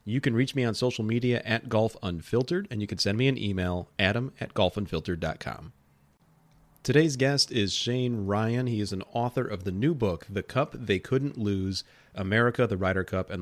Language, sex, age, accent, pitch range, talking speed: English, male, 30-49, American, 90-115 Hz, 190 wpm